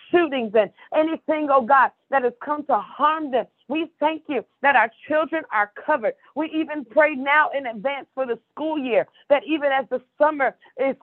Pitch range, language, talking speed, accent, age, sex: 250-300 Hz, English, 190 wpm, American, 40-59, female